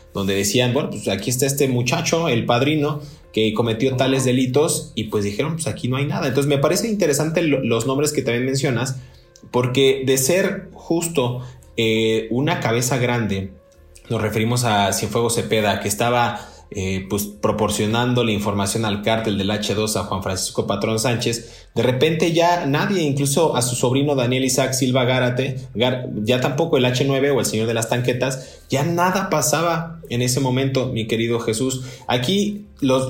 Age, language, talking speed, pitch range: 20-39, Spanish, 170 wpm, 105-140 Hz